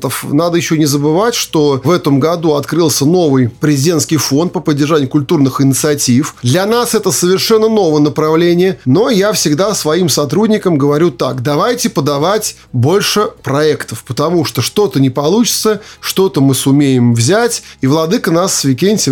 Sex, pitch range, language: male, 140-185 Hz, Russian